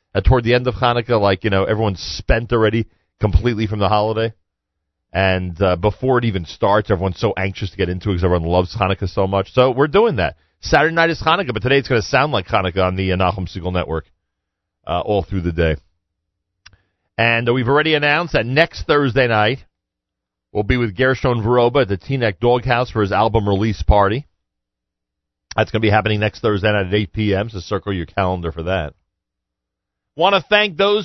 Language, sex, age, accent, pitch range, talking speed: English, male, 40-59, American, 95-145 Hz, 200 wpm